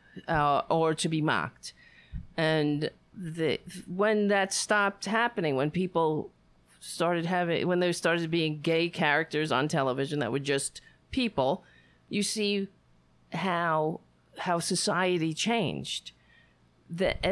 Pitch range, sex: 145-195 Hz, female